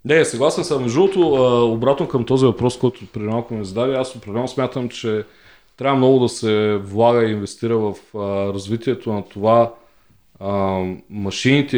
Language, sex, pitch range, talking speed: Bulgarian, male, 105-130 Hz, 145 wpm